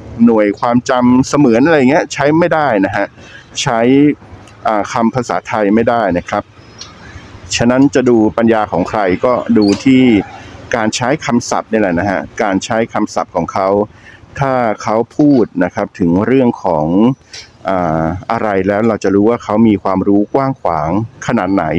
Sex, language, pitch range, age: male, Thai, 100-130 Hz, 60-79